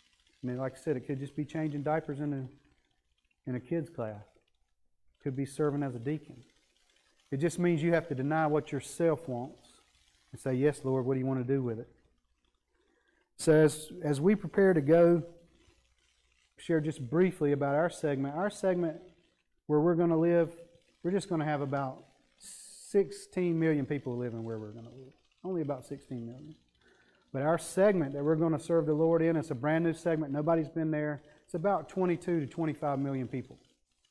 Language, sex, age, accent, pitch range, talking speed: English, male, 40-59, American, 130-160 Hz, 195 wpm